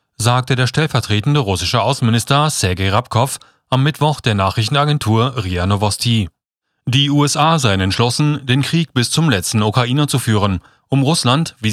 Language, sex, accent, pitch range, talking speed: German, male, German, 105-140 Hz, 145 wpm